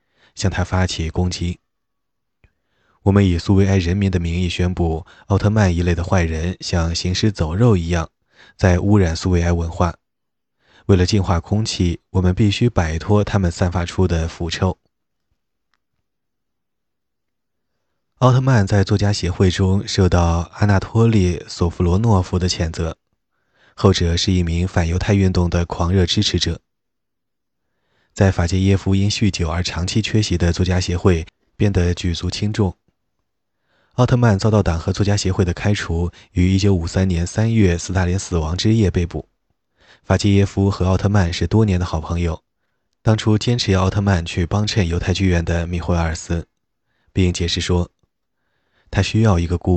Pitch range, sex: 85-100 Hz, male